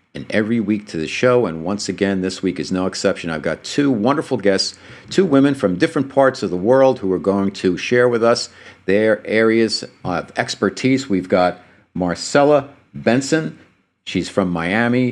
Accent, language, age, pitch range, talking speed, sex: American, English, 50-69, 95-125 Hz, 180 wpm, male